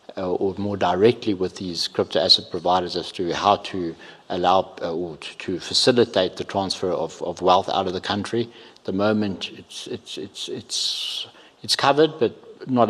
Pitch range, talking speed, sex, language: 95-110 Hz, 170 wpm, male, English